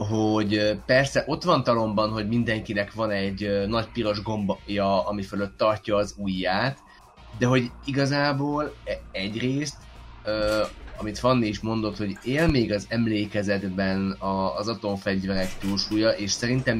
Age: 20-39